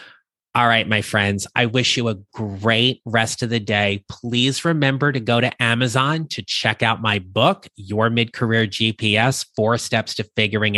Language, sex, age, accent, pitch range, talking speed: English, male, 30-49, American, 105-125 Hz, 175 wpm